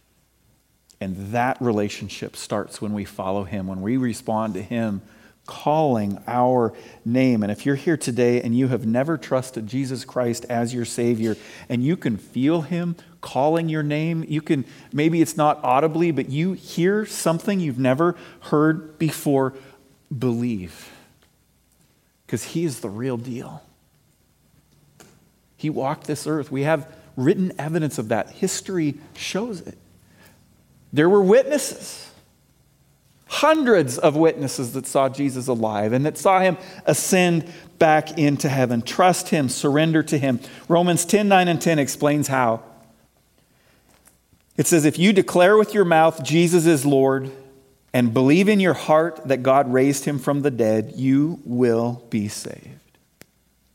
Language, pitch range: English, 120-160 Hz